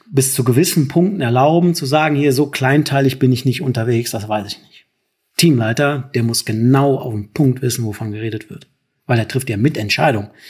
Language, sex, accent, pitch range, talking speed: German, male, German, 125-150 Hz, 200 wpm